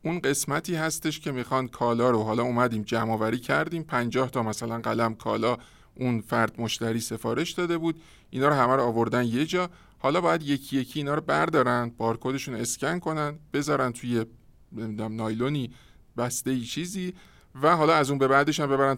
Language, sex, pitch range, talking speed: Persian, male, 120-145 Hz, 170 wpm